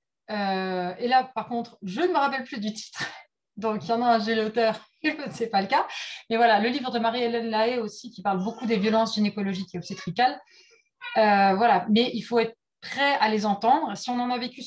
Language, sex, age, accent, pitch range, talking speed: French, female, 30-49, French, 195-250 Hz, 225 wpm